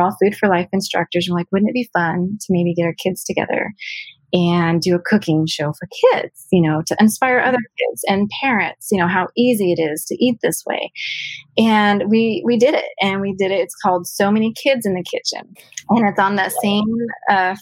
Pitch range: 175-215 Hz